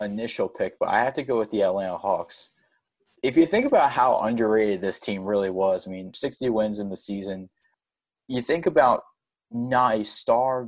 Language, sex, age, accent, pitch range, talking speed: English, male, 20-39, American, 100-115 Hz, 190 wpm